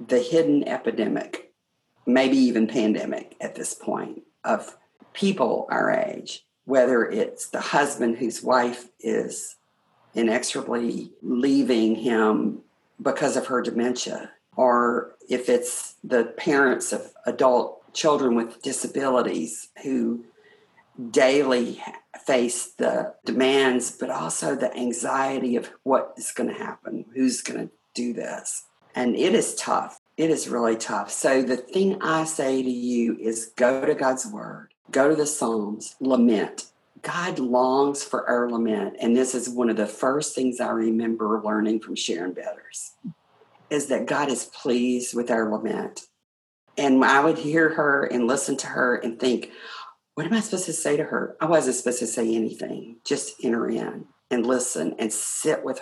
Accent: American